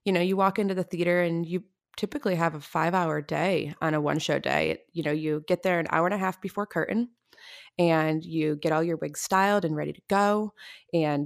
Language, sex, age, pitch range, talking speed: English, female, 20-39, 160-195 Hz, 225 wpm